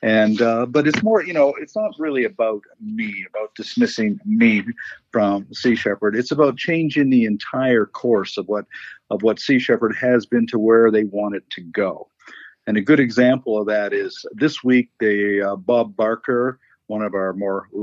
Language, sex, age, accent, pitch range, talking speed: English, male, 50-69, American, 115-145 Hz, 190 wpm